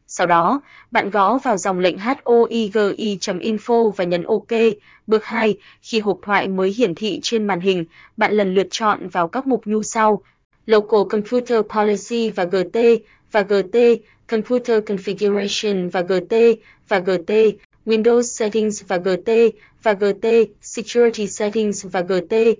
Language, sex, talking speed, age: Vietnamese, female, 145 wpm, 20-39